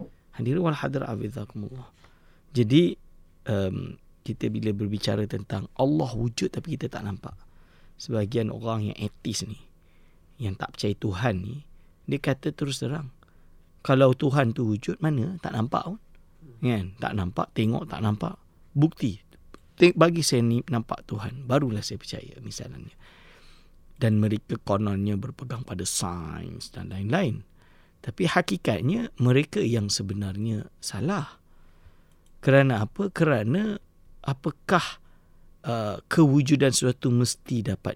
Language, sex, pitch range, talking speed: English, male, 95-140 Hz, 115 wpm